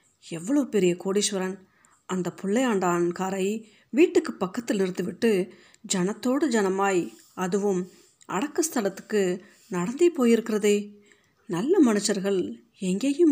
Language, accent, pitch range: Tamil, native, 185-220 Hz